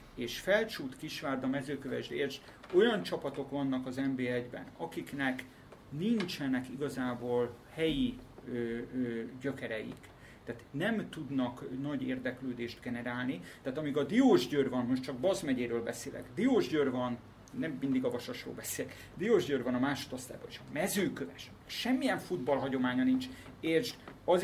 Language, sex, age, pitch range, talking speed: Hungarian, male, 30-49, 125-145 Hz, 130 wpm